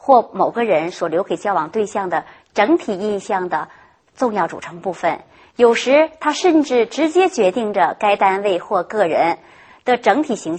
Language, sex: Chinese, male